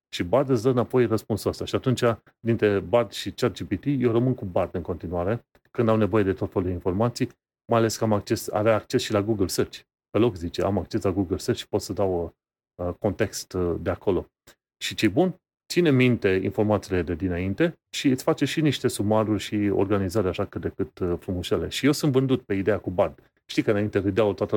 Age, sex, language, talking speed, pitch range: 30-49, male, Romanian, 220 wpm, 100-130 Hz